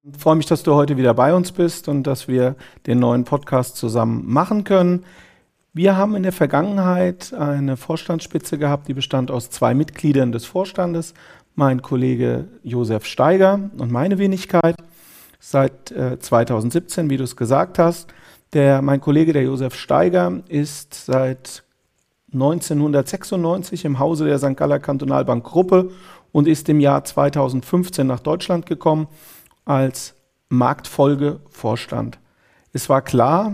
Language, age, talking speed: German, 40-59, 140 wpm